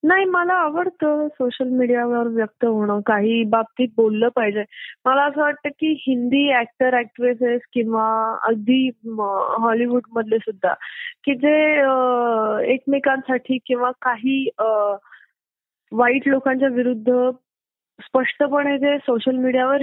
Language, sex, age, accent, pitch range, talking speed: Marathi, female, 20-39, native, 225-275 Hz, 110 wpm